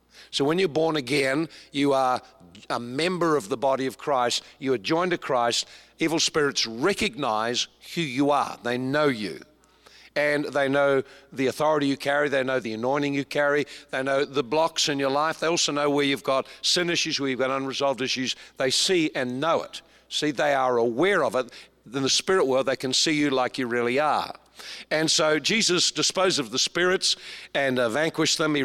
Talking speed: 200 wpm